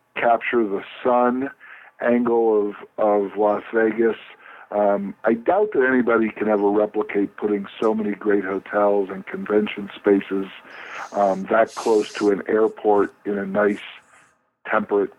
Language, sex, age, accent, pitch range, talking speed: English, male, 50-69, American, 100-115 Hz, 135 wpm